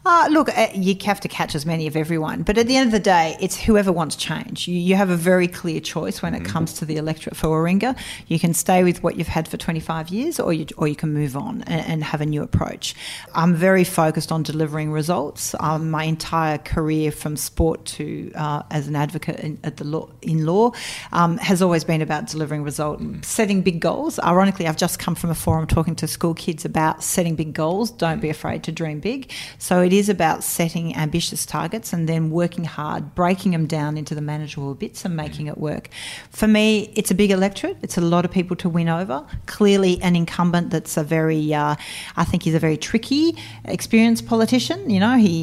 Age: 40-59